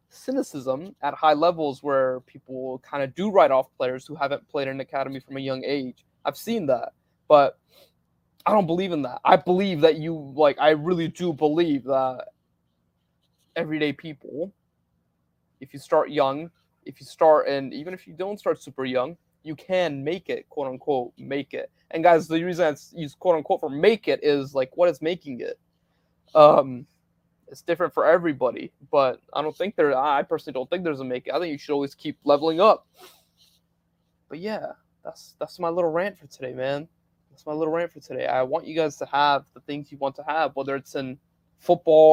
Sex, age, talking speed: male, 20-39, 195 wpm